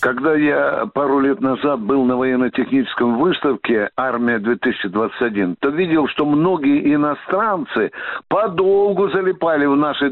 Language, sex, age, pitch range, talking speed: Russian, male, 60-79, 155-215 Hz, 115 wpm